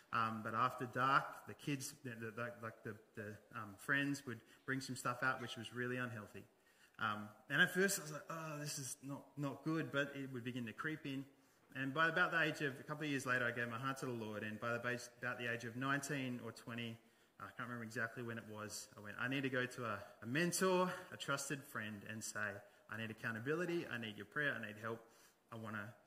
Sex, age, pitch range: male, 20-39, 110-140 Hz